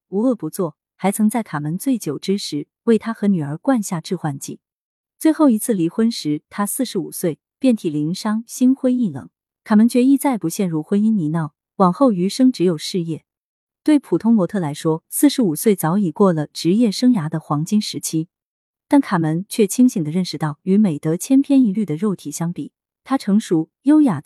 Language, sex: Chinese, female